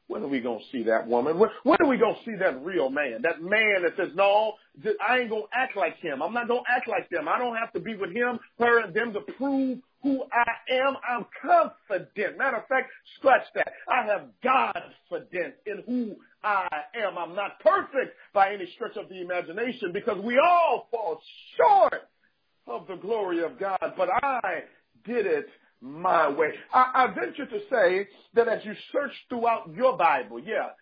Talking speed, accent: 205 wpm, American